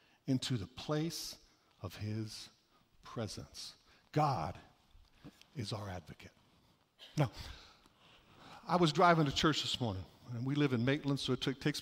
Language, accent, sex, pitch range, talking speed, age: English, American, male, 105-155 Hz, 135 wpm, 60-79